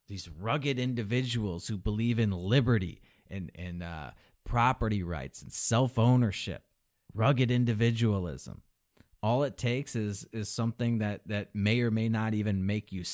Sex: male